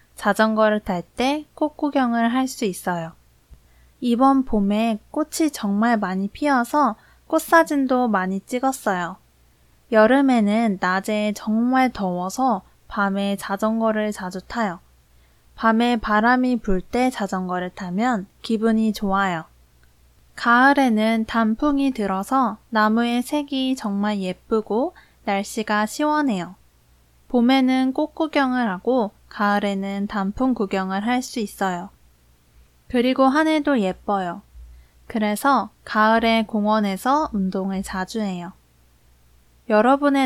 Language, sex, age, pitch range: Korean, female, 20-39, 190-255 Hz